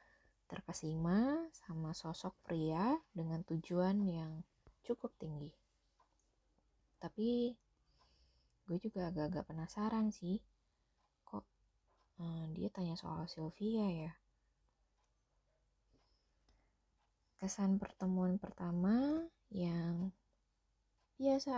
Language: Indonesian